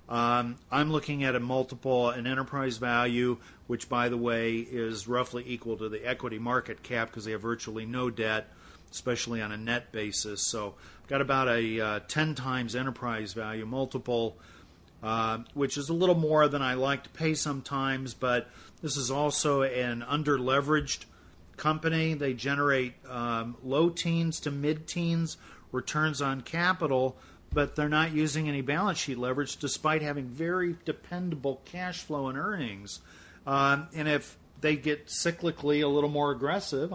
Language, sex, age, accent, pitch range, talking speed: English, male, 50-69, American, 120-145 Hz, 160 wpm